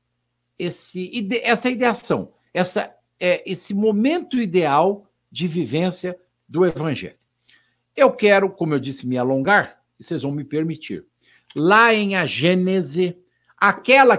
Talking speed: 110 wpm